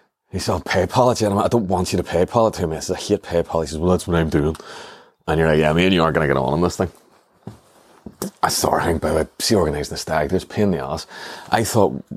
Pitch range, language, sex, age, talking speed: 80-100 Hz, English, male, 30-49, 295 wpm